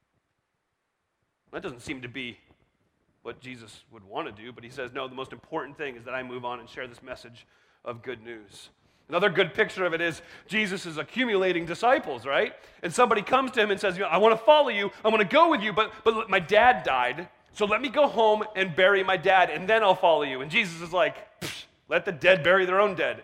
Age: 30-49